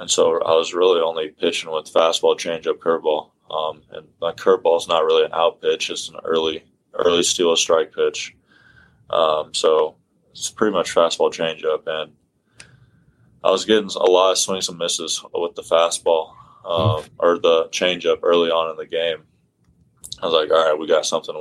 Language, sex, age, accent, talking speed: English, male, 20-39, American, 185 wpm